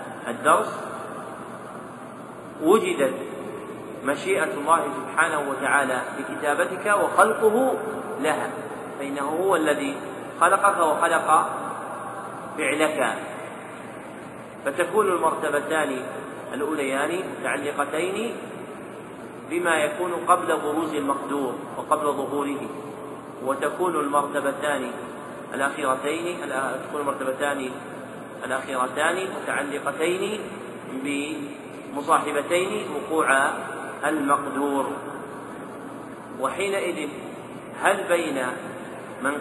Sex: male